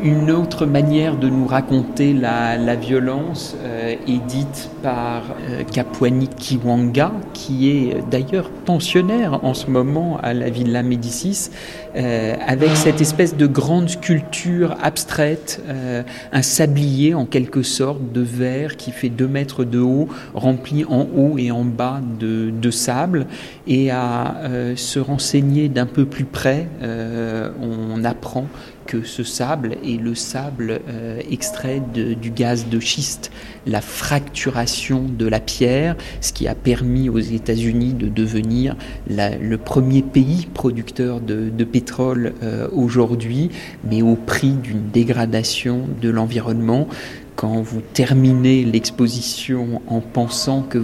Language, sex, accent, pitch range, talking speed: French, male, French, 115-140 Hz, 145 wpm